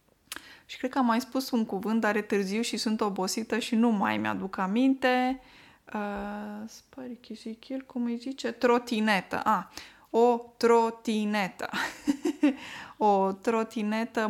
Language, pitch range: Romanian, 195-240 Hz